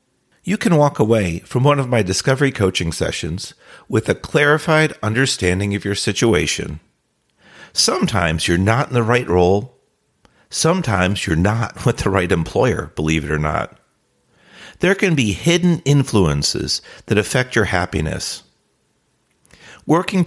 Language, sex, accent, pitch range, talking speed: English, male, American, 100-145 Hz, 135 wpm